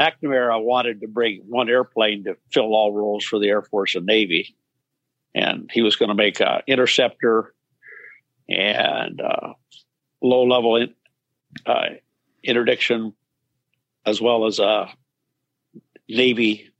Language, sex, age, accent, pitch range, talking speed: English, male, 50-69, American, 105-135 Hz, 120 wpm